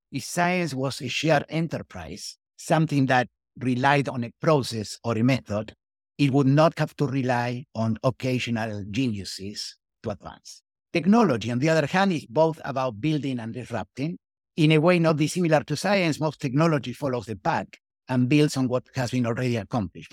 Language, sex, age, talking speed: English, male, 50-69, 170 wpm